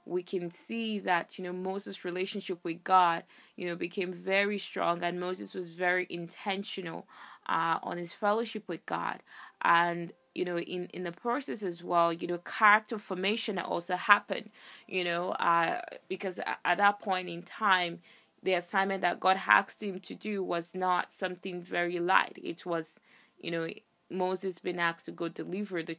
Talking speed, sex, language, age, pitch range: 170 wpm, female, English, 20-39, 170-190 Hz